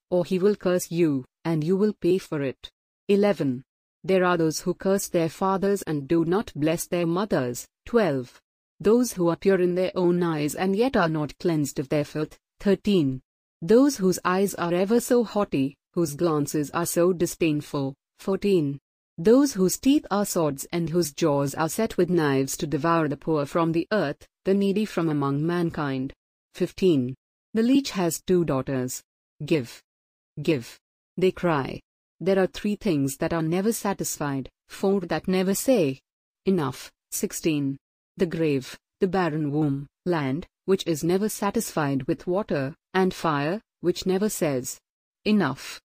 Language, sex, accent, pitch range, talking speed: English, female, Indian, 150-195 Hz, 160 wpm